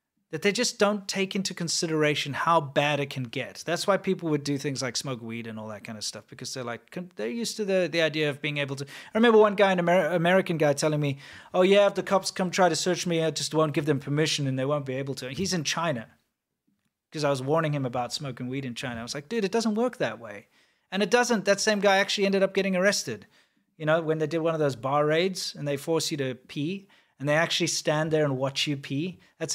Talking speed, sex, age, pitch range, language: 265 wpm, male, 30-49, 140-190 Hz, English